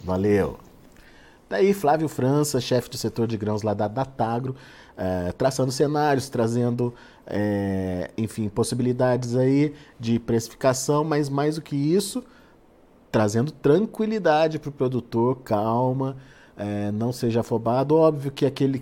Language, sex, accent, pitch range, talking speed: Portuguese, male, Brazilian, 115-150 Hz, 130 wpm